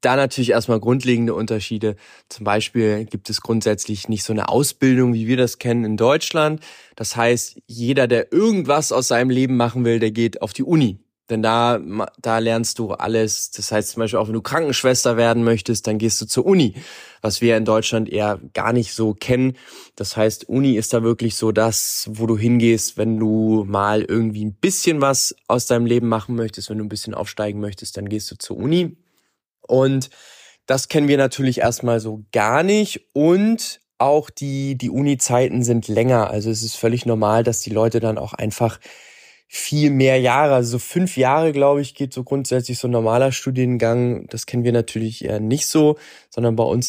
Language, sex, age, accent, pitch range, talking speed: German, male, 20-39, German, 110-130 Hz, 195 wpm